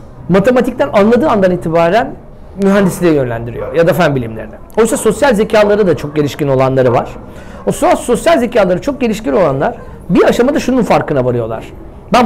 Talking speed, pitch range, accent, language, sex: 145 wpm, 160-250 Hz, native, Turkish, male